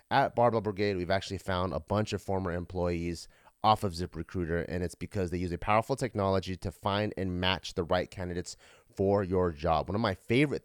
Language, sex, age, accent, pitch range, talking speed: English, male, 30-49, American, 95-115 Hz, 210 wpm